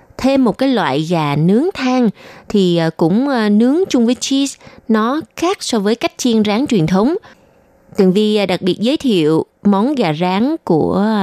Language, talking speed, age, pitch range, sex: Vietnamese, 170 wpm, 20-39, 180-235 Hz, female